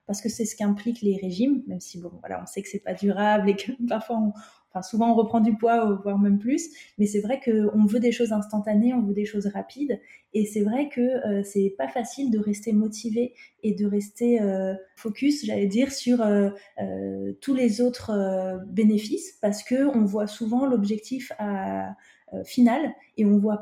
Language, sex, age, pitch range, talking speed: French, female, 20-39, 205-240 Hz, 210 wpm